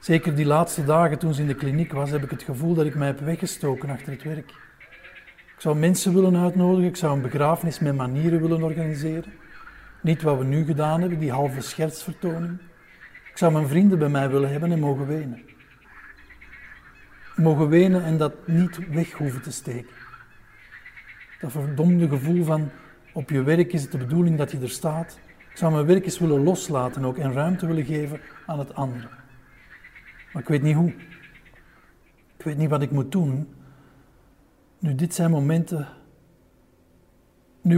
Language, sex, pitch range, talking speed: Dutch, male, 135-170 Hz, 175 wpm